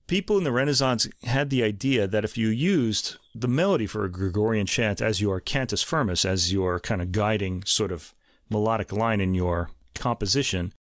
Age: 30-49